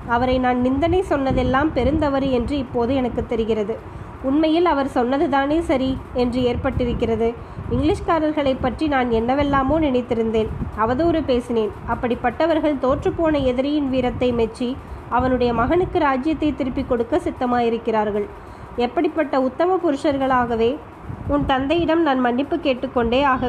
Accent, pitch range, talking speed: native, 245-300 Hz, 105 wpm